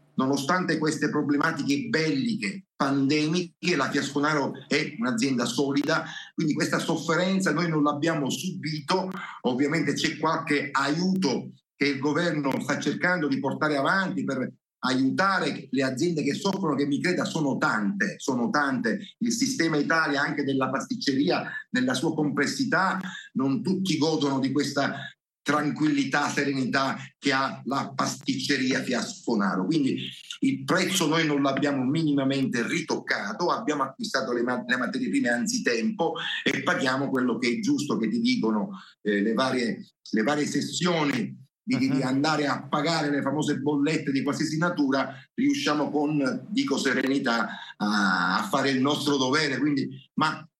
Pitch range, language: 140-180 Hz, Italian